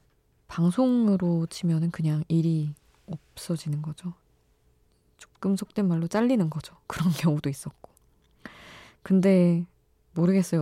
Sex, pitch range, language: female, 145-180 Hz, Korean